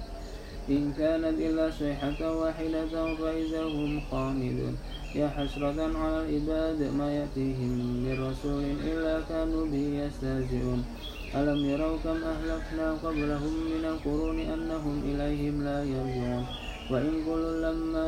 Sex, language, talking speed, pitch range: male, English, 115 wpm, 140-160 Hz